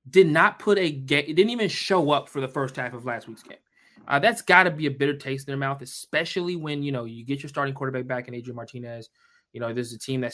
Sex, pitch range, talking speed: male, 125-150 Hz, 280 wpm